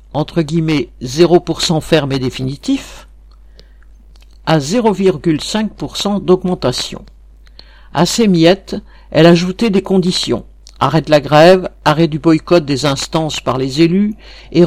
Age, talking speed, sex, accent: 60-79, 120 wpm, male, French